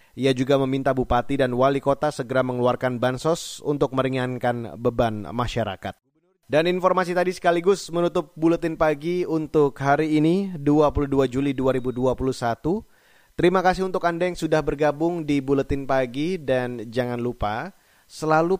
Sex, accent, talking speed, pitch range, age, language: male, native, 130 wpm, 120-150 Hz, 30-49, Indonesian